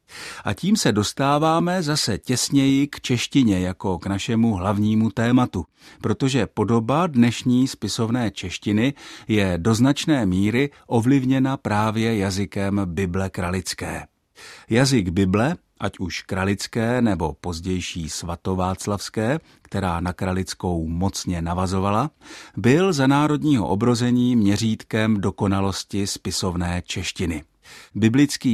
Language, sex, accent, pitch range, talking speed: Czech, male, native, 95-125 Hz, 105 wpm